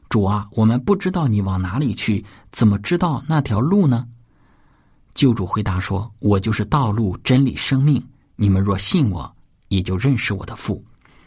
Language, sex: Chinese, male